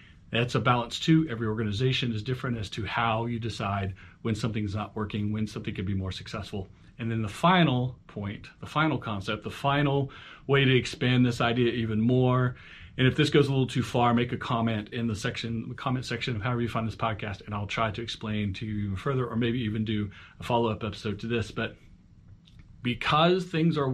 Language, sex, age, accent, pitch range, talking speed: English, male, 40-59, American, 105-125 Hz, 215 wpm